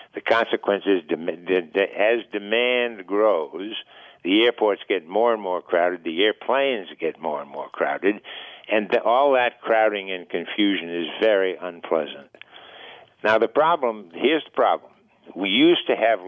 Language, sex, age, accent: English, male, 60-79, American